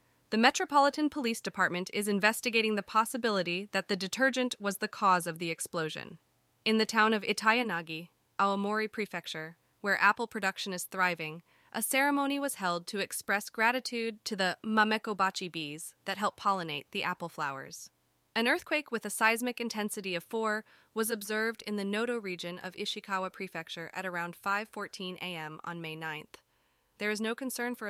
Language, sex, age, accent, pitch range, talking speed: English, female, 20-39, American, 175-220 Hz, 160 wpm